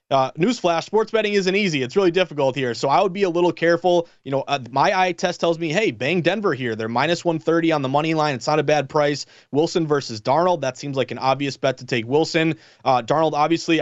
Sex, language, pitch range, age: male, English, 140-180 Hz, 30-49